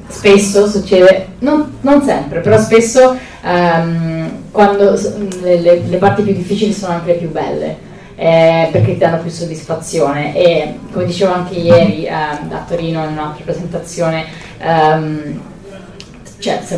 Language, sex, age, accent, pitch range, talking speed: Italian, female, 20-39, native, 165-205 Hz, 130 wpm